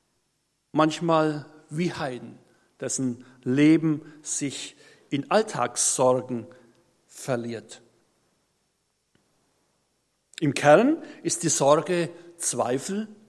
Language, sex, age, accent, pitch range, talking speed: German, male, 60-79, German, 140-195 Hz, 70 wpm